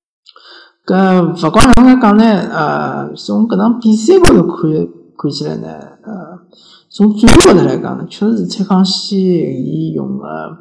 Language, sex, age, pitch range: Chinese, male, 50-69, 150-190 Hz